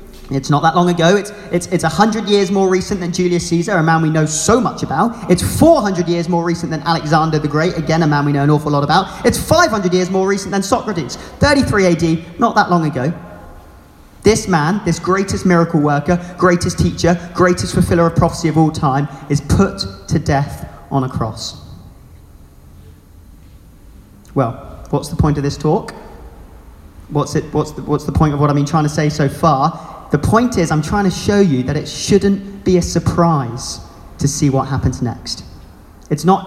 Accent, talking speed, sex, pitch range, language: British, 190 wpm, male, 140-195 Hz, English